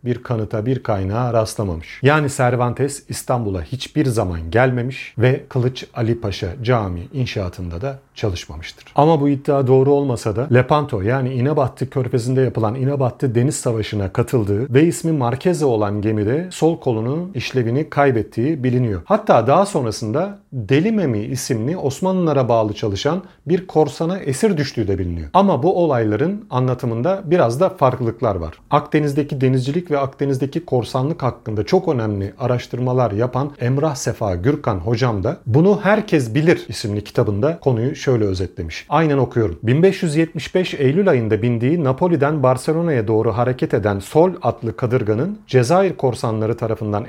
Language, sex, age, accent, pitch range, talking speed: Turkish, male, 40-59, native, 115-150 Hz, 135 wpm